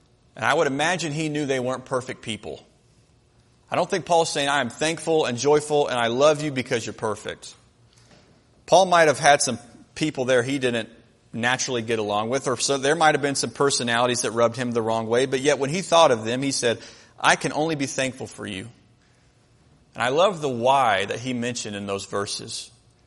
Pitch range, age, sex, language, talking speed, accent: 120-150 Hz, 30-49, male, English, 210 wpm, American